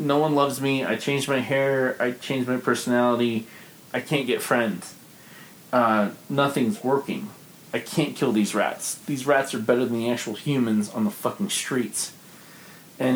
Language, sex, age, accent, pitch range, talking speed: English, male, 30-49, American, 110-140 Hz, 170 wpm